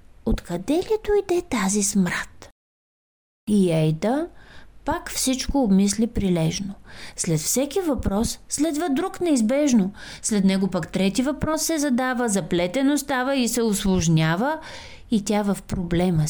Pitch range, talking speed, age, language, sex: 190-285 Hz, 125 wpm, 30-49, Bulgarian, female